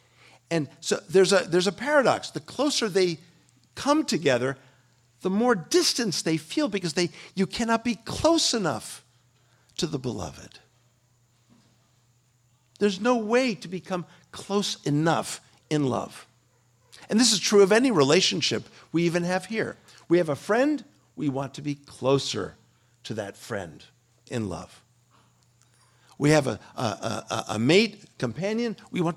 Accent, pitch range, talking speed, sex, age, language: American, 120-195 Hz, 145 wpm, male, 50-69, English